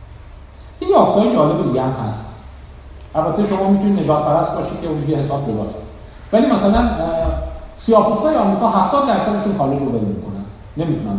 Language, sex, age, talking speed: Persian, male, 50-69, 140 wpm